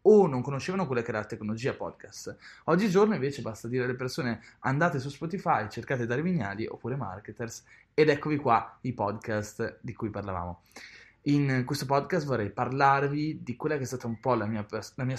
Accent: native